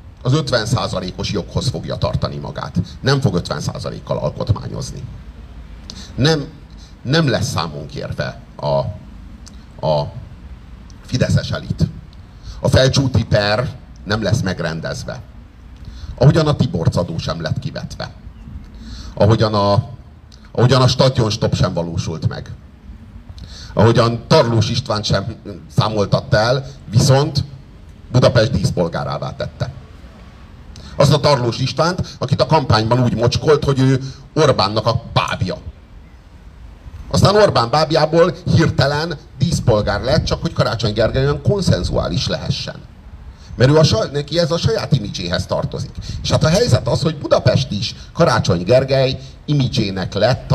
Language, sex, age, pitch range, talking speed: Hungarian, male, 50-69, 95-145 Hz, 115 wpm